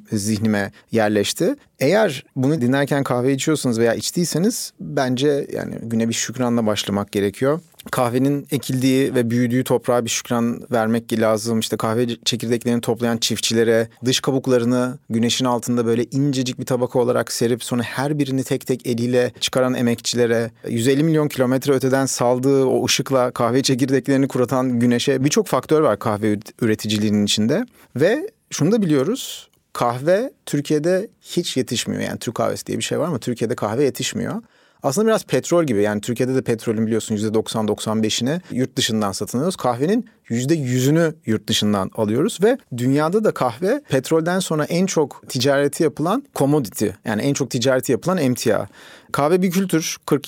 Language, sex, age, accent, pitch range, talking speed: Turkish, male, 40-59, native, 115-145 Hz, 145 wpm